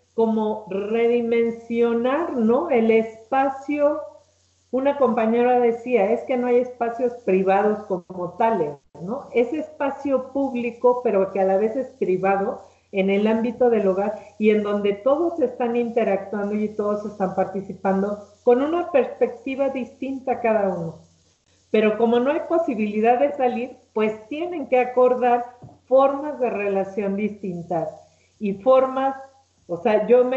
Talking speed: 140 wpm